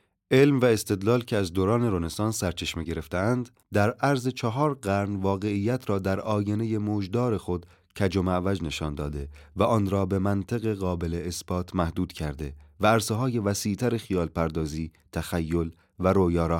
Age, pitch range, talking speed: 30-49, 85-105 Hz, 145 wpm